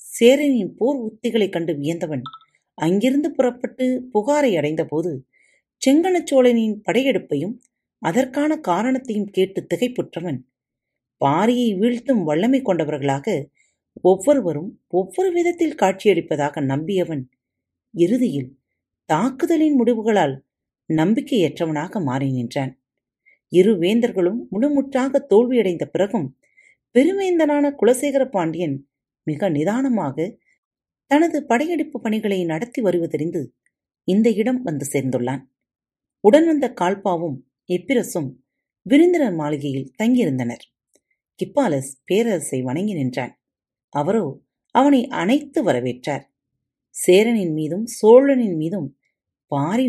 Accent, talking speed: native, 80 wpm